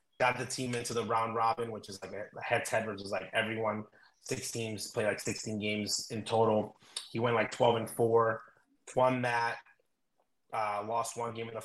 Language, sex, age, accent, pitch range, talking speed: English, male, 30-49, American, 110-125 Hz, 200 wpm